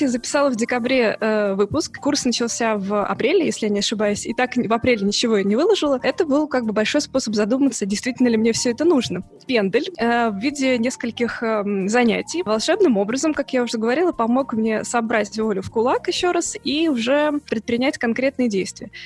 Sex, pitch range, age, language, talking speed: female, 215-255 Hz, 20-39, Russian, 190 wpm